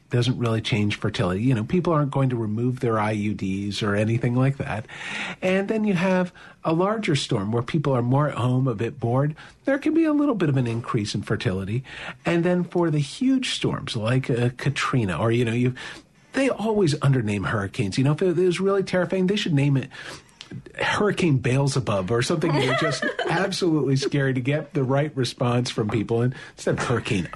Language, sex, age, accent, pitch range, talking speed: English, male, 50-69, American, 120-160 Hz, 200 wpm